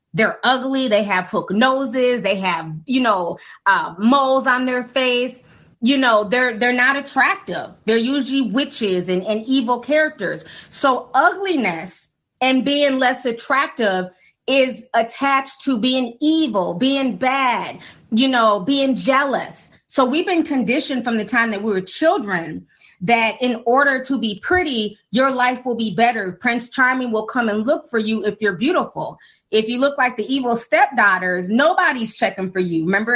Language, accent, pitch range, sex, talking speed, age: English, American, 225-270 Hz, female, 165 wpm, 30-49